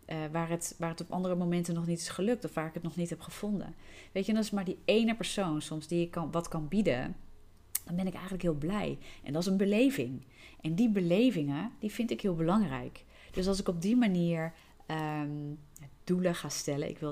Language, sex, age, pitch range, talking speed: Dutch, female, 30-49, 155-185 Hz, 220 wpm